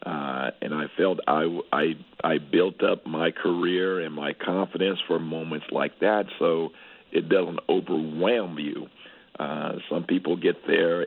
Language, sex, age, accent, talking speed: English, male, 60-79, American, 150 wpm